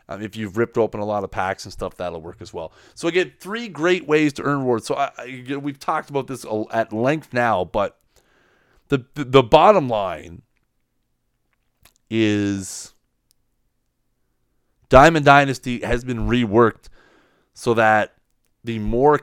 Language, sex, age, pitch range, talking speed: English, male, 30-49, 105-135 Hz, 155 wpm